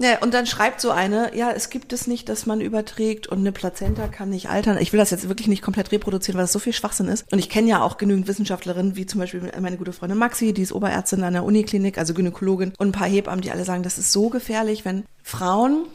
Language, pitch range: German, 190-225 Hz